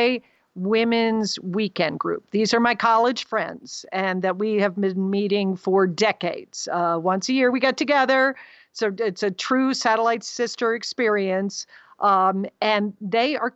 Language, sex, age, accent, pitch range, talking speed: English, female, 50-69, American, 200-245 Hz, 150 wpm